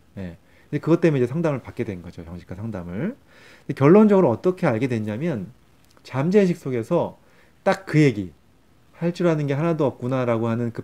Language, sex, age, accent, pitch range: Korean, male, 30-49, native, 110-160 Hz